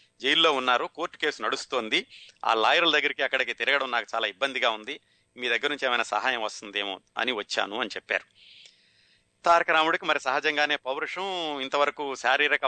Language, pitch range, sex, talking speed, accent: Telugu, 115-145 Hz, male, 145 wpm, native